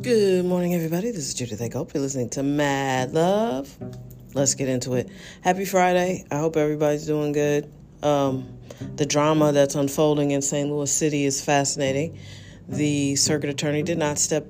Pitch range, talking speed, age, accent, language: 135-165 Hz, 165 wpm, 40-59, American, English